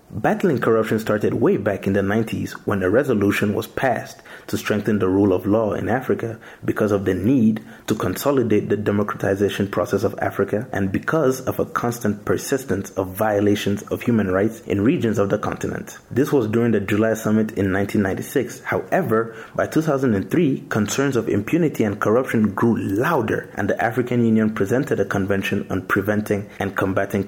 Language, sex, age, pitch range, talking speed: English, male, 30-49, 100-115 Hz, 170 wpm